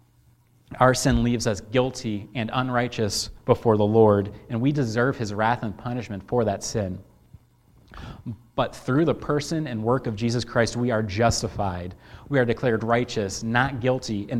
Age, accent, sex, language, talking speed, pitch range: 30-49, American, male, English, 165 wpm, 110-130 Hz